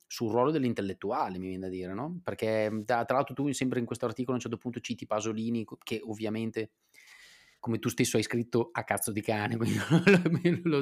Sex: male